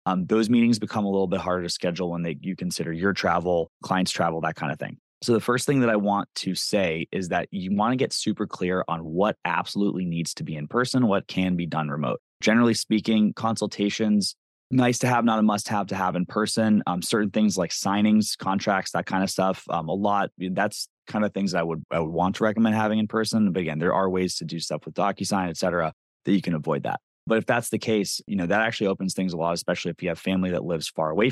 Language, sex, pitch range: English, male, 85-110 Hz